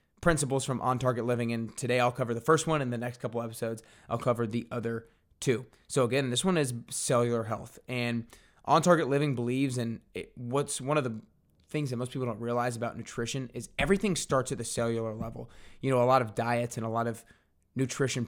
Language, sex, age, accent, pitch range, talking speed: English, male, 20-39, American, 120-145 Hz, 215 wpm